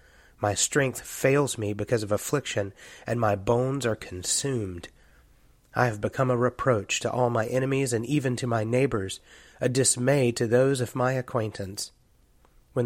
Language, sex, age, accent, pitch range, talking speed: English, male, 30-49, American, 100-125 Hz, 160 wpm